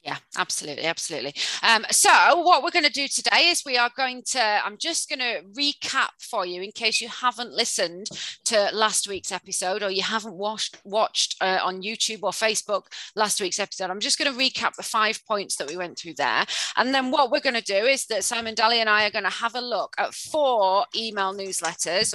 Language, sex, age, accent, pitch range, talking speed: English, female, 30-49, British, 185-245 Hz, 220 wpm